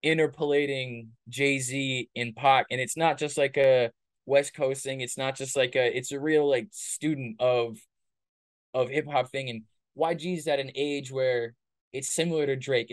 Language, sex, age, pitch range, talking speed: English, male, 20-39, 120-145 Hz, 175 wpm